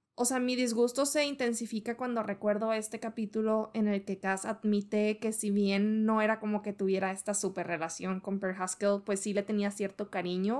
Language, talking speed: Spanish, 200 wpm